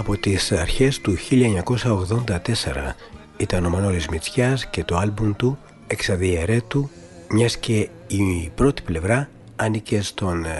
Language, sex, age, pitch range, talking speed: Greek, male, 60-79, 90-125 Hz, 120 wpm